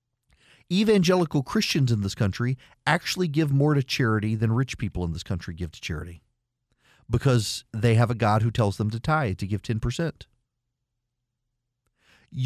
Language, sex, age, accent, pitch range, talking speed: English, male, 40-59, American, 115-145 Hz, 155 wpm